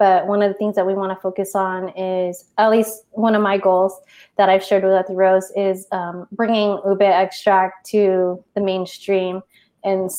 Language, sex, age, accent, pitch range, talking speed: English, female, 20-39, American, 190-220 Hz, 195 wpm